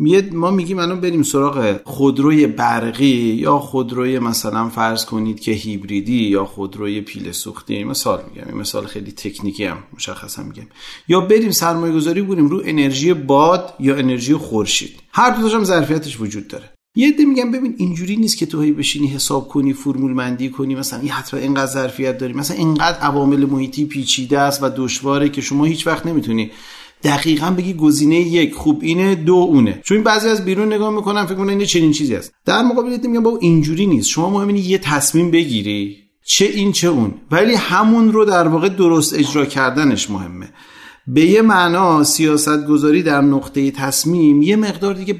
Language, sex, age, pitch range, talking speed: Persian, male, 40-59, 130-185 Hz, 180 wpm